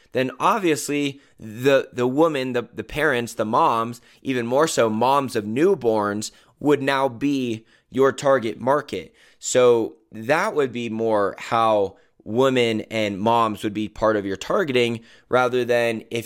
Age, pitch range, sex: 20-39, 110-130 Hz, male